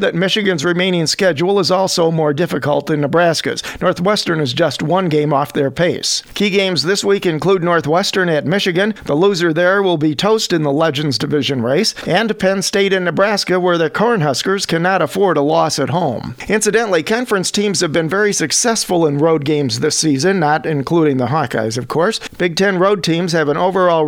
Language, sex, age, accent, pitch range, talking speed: English, male, 50-69, American, 155-195 Hz, 190 wpm